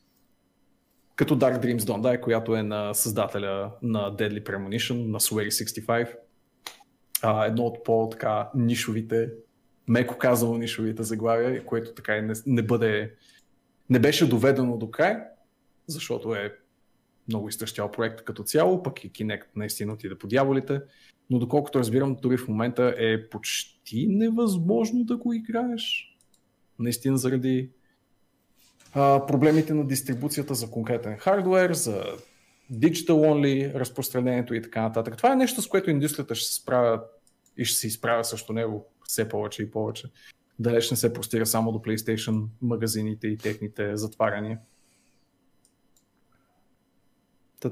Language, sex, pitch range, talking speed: Bulgarian, male, 110-135 Hz, 135 wpm